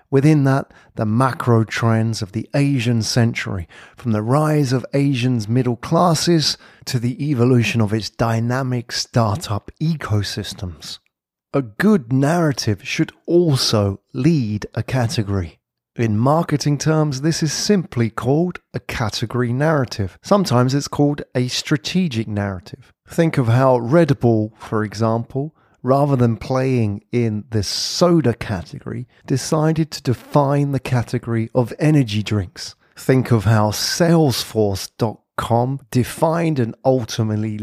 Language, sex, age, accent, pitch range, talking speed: English, male, 30-49, British, 110-150 Hz, 125 wpm